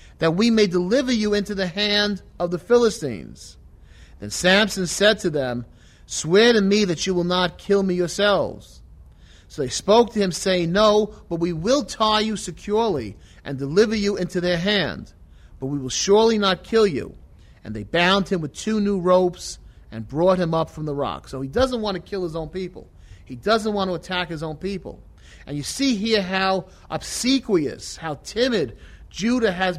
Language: English